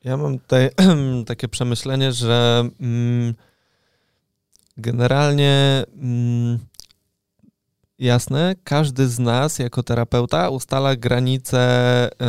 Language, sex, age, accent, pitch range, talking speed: Polish, male, 20-39, native, 115-130 Hz, 75 wpm